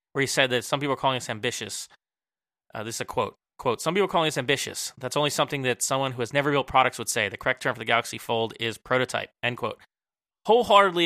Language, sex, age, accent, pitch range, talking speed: English, male, 20-39, American, 115-140 Hz, 250 wpm